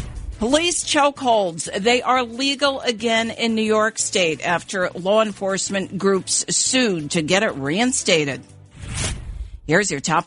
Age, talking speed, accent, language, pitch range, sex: 50-69, 130 wpm, American, English, 175-240 Hz, female